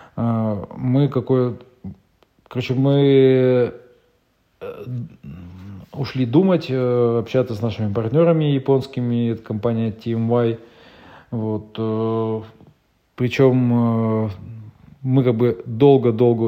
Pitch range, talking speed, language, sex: 105-125 Hz, 75 wpm, Russian, male